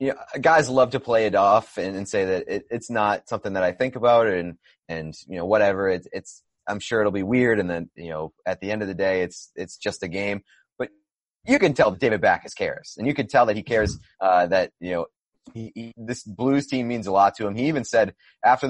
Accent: American